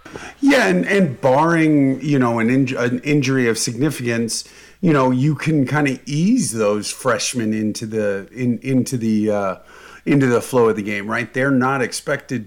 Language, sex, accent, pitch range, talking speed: English, male, American, 110-135 Hz, 180 wpm